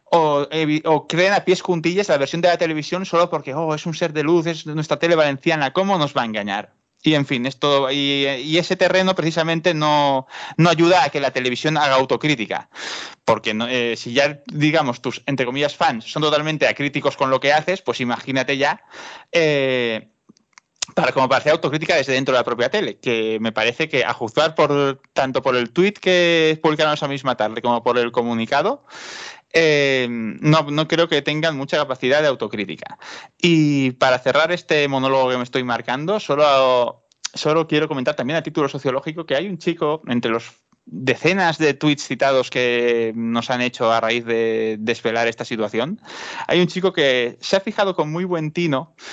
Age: 20-39